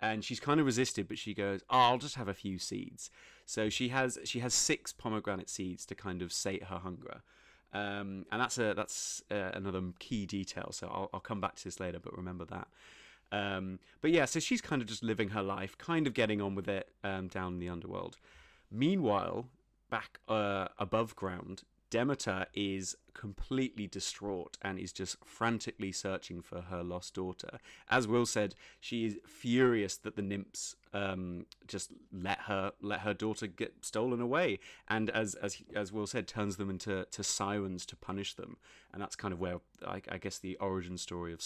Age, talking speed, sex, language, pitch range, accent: 30-49, 195 wpm, male, English, 95-120 Hz, British